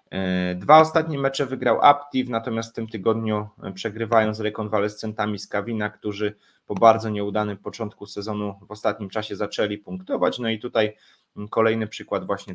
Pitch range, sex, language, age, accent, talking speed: 95-110 Hz, male, Polish, 20-39, native, 145 wpm